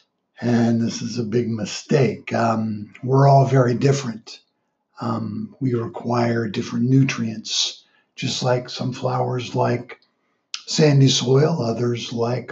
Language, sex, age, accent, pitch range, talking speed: English, male, 60-79, American, 115-135 Hz, 120 wpm